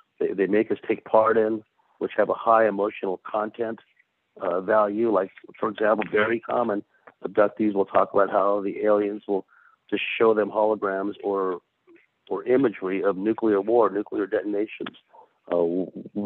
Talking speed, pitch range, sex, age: 150 wpm, 100-115 Hz, male, 50-69